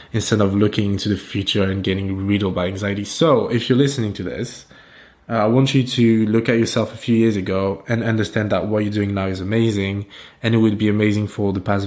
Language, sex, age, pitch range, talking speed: English, male, 20-39, 100-115 Hz, 235 wpm